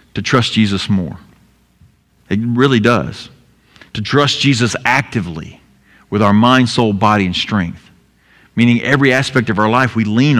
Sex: male